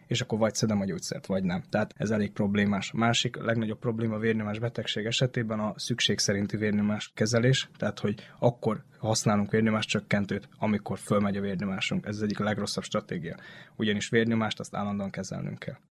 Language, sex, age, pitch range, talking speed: Hungarian, male, 20-39, 105-125 Hz, 175 wpm